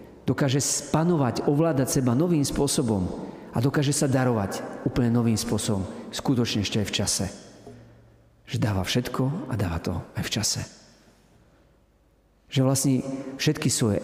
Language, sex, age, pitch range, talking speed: Slovak, male, 50-69, 95-120 Hz, 130 wpm